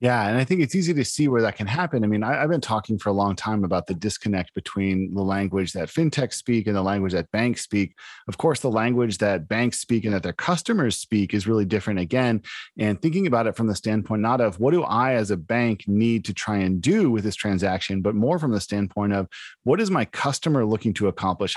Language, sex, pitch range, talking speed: English, male, 100-130 Hz, 250 wpm